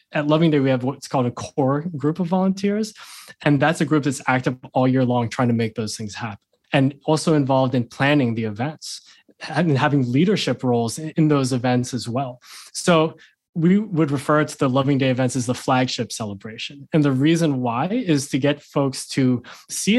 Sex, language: male, English